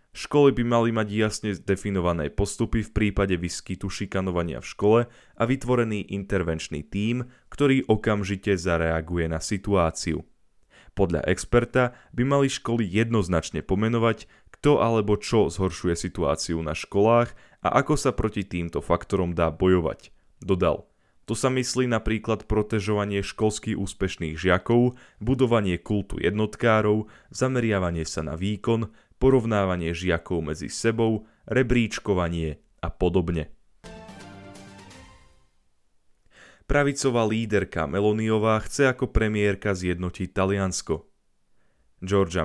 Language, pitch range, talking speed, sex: Slovak, 90-115 Hz, 105 wpm, male